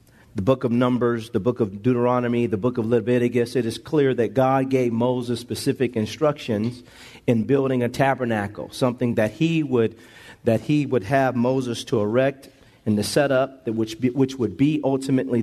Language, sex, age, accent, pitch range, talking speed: English, male, 40-59, American, 120-145 Hz, 180 wpm